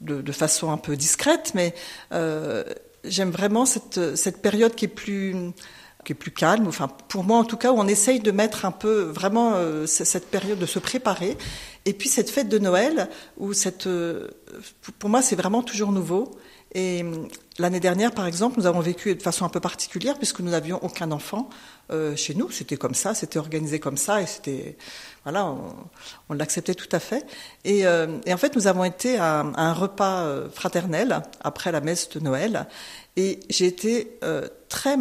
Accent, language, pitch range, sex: French, French, 165-220 Hz, female